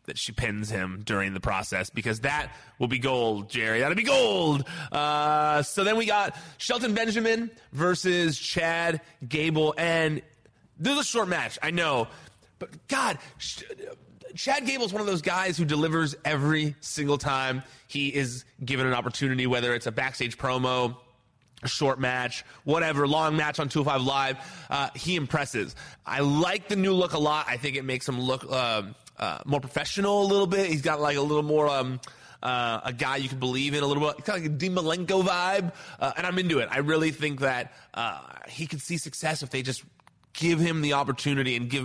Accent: American